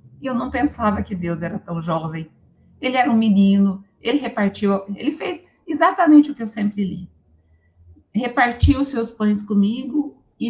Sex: female